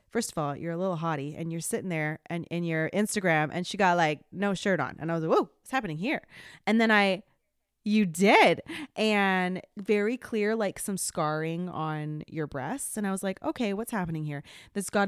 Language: English